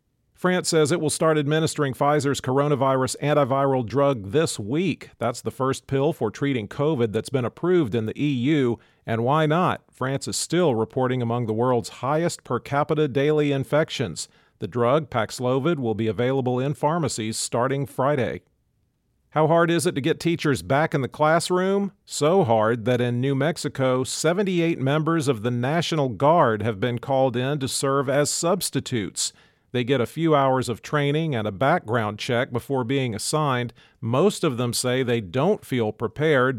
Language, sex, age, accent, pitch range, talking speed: English, male, 40-59, American, 120-150 Hz, 170 wpm